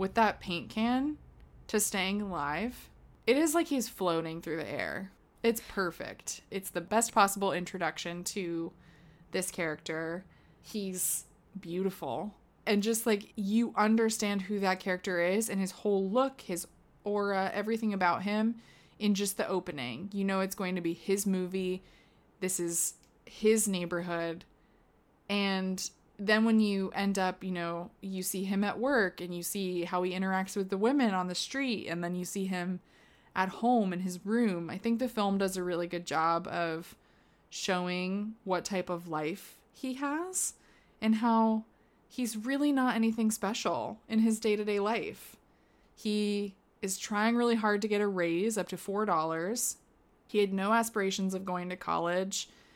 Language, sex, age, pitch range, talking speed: English, female, 20-39, 180-220 Hz, 165 wpm